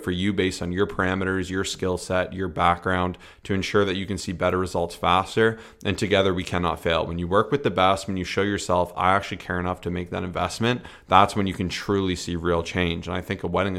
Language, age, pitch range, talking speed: English, 30-49, 90-105 Hz, 245 wpm